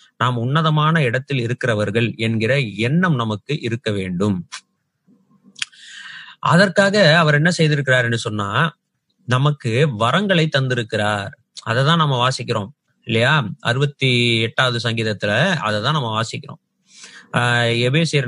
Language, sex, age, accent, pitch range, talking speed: Tamil, male, 30-49, native, 115-150 Hz, 45 wpm